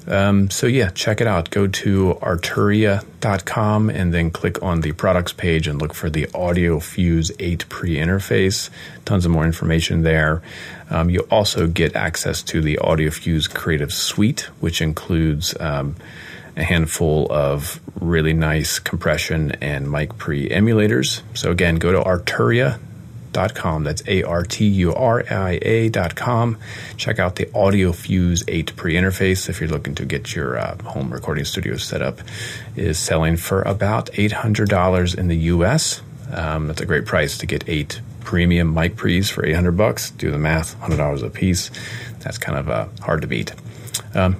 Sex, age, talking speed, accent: male, 30-49, 155 wpm, American